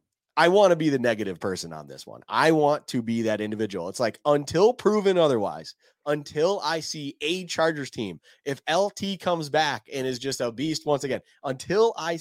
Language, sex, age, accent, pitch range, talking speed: English, male, 20-39, American, 120-160 Hz, 195 wpm